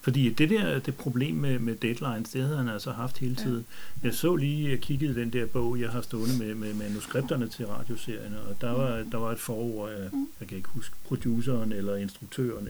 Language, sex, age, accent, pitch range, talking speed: Danish, male, 60-79, native, 110-135 Hz, 215 wpm